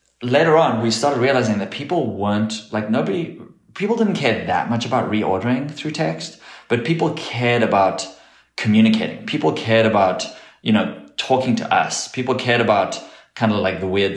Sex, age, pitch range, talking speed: male, 30-49, 95-120 Hz, 170 wpm